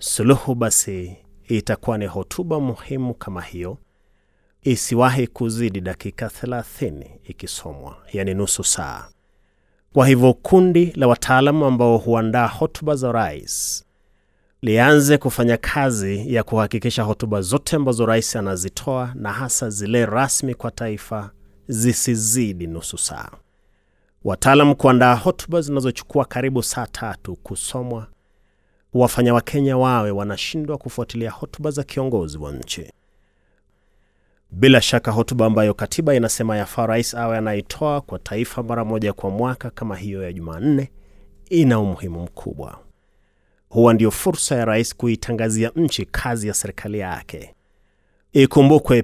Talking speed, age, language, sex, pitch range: 120 wpm, 30-49, Swahili, male, 105-130 Hz